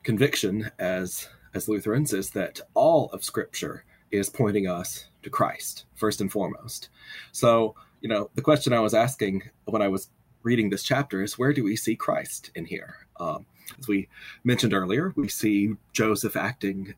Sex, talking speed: male, 170 wpm